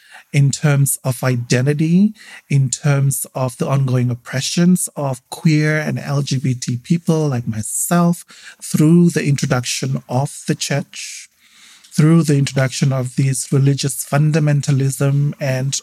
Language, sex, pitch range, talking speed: English, male, 130-155 Hz, 120 wpm